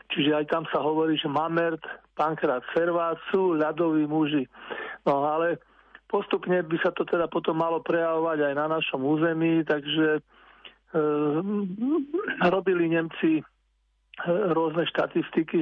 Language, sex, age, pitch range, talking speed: Slovak, male, 50-69, 155-180 Hz, 120 wpm